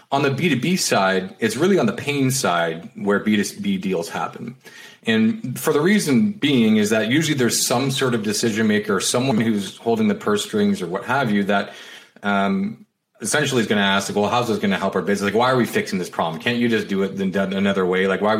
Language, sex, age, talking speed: English, male, 30-49, 230 wpm